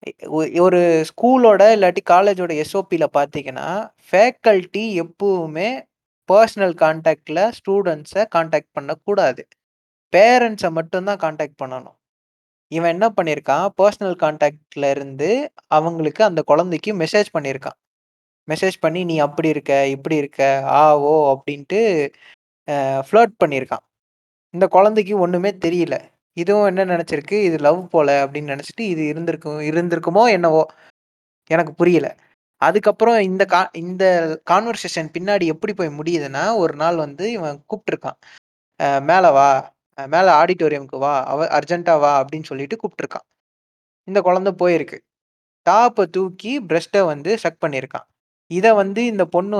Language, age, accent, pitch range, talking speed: Tamil, 20-39, native, 150-200 Hz, 115 wpm